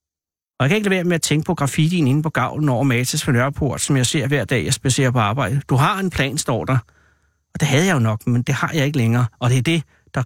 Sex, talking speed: male, 290 wpm